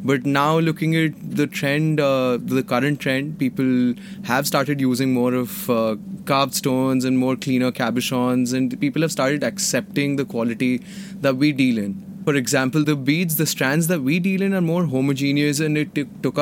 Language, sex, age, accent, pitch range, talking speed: French, male, 20-39, Indian, 125-155 Hz, 185 wpm